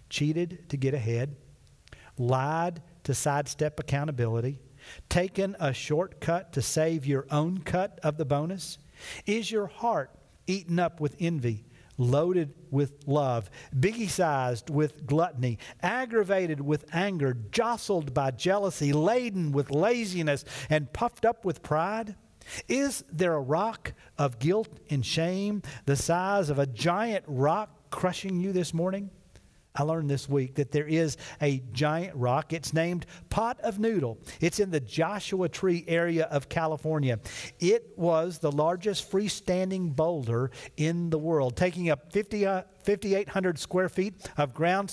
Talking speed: 140 wpm